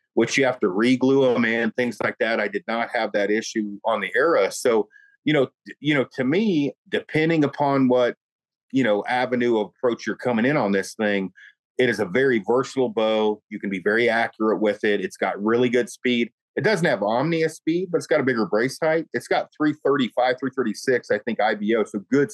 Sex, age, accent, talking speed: male, 40-59, American, 210 wpm